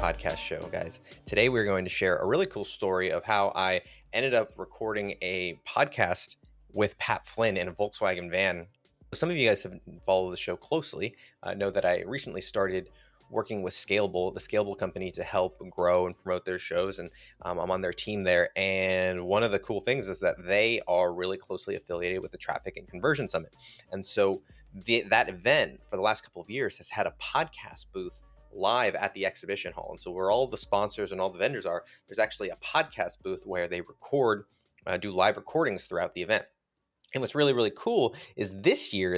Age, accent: 20-39, American